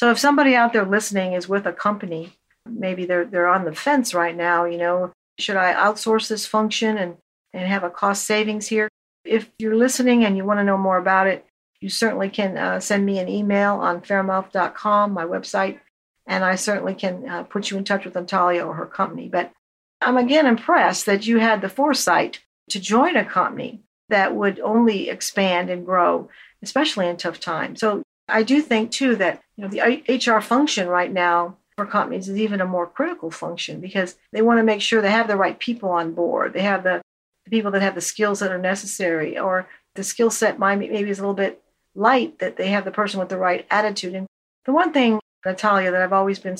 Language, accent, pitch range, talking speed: English, American, 185-220 Hz, 215 wpm